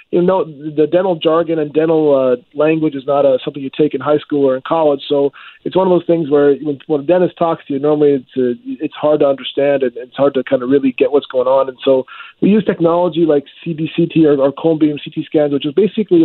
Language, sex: English, male